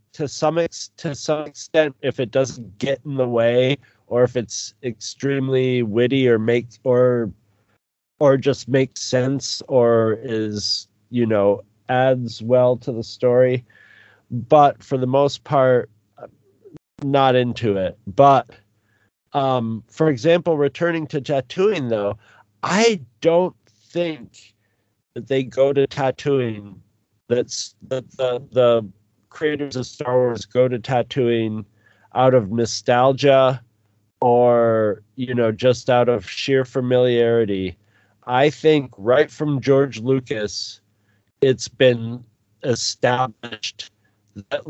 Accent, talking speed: American, 120 wpm